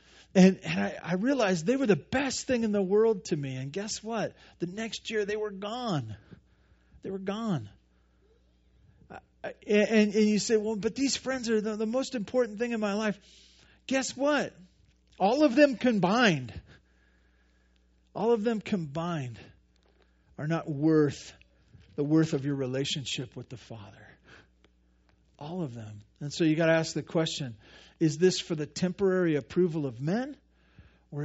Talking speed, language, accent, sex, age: 165 wpm, English, American, male, 50-69